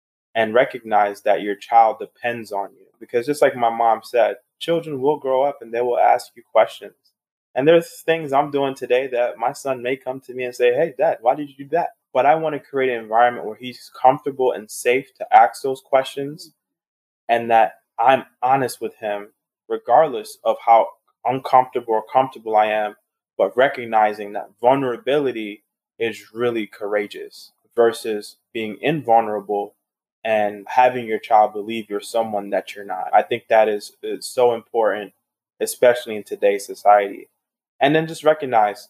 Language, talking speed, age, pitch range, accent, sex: English, 170 wpm, 20-39, 110-140 Hz, American, male